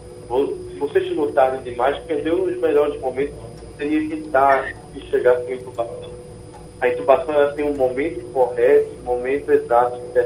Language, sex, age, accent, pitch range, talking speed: Portuguese, male, 20-39, Brazilian, 120-170 Hz, 150 wpm